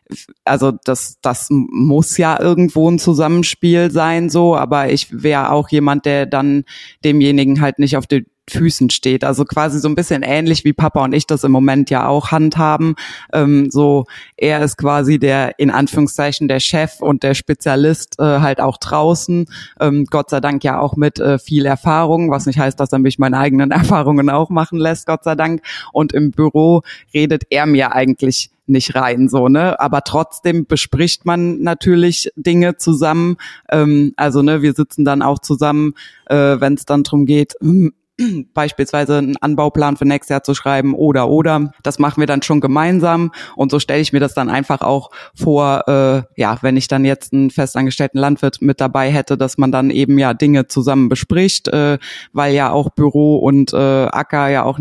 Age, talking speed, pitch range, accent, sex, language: 20-39, 185 wpm, 135-155 Hz, German, female, German